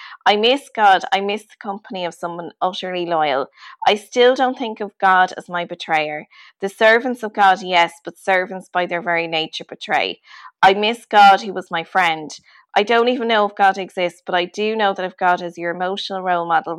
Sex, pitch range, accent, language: female, 175-215 Hz, Irish, English